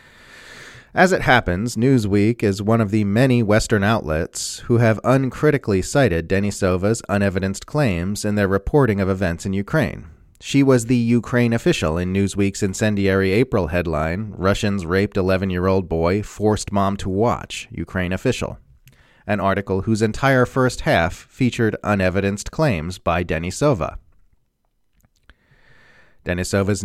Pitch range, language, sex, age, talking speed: 95-120 Hz, English, male, 30-49, 125 wpm